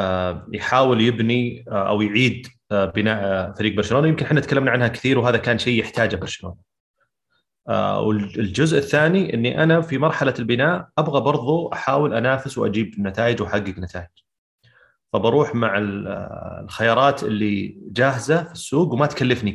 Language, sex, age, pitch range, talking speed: Arabic, male, 30-49, 100-120 Hz, 125 wpm